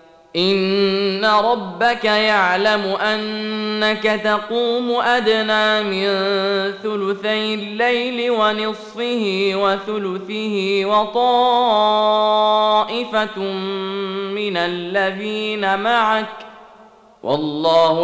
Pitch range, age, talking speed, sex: 175-215 Hz, 20-39, 55 wpm, male